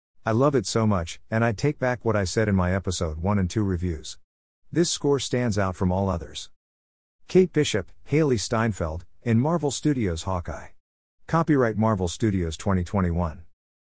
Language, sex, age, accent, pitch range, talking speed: English, male, 50-69, American, 85-125 Hz, 165 wpm